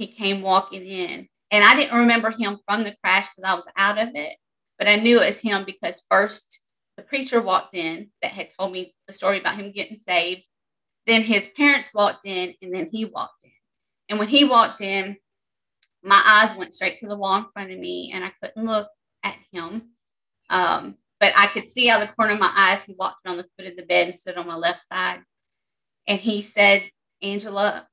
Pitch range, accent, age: 185-225 Hz, American, 30-49